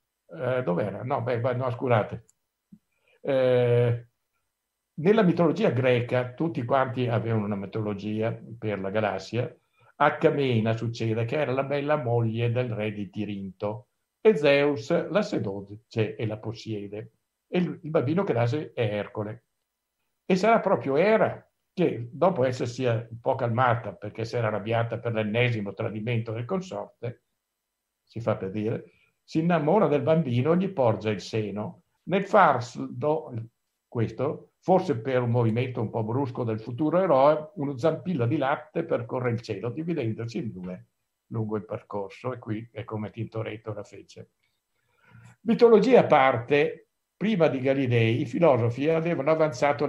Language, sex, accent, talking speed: Italian, male, native, 140 wpm